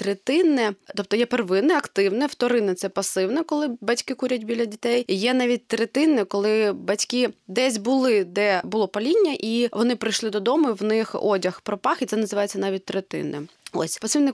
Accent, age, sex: native, 20-39, female